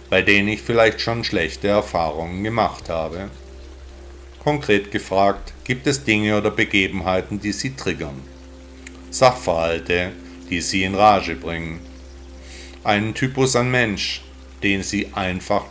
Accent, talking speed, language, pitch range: German, 120 wpm, German, 80-110 Hz